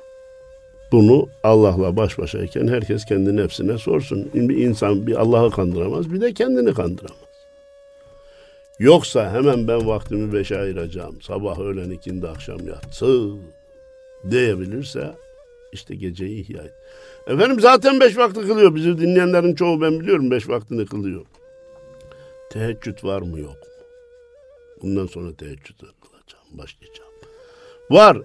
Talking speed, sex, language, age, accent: 120 wpm, male, Turkish, 60-79, native